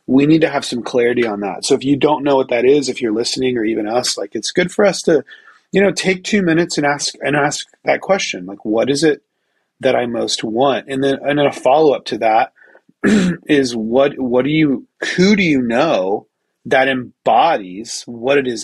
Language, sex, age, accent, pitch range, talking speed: English, male, 30-49, American, 110-140 Hz, 225 wpm